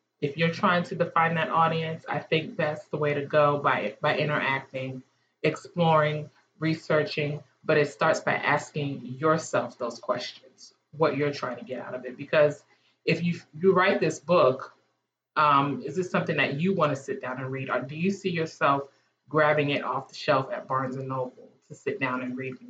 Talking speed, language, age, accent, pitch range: 195 wpm, English, 30-49, American, 140-175 Hz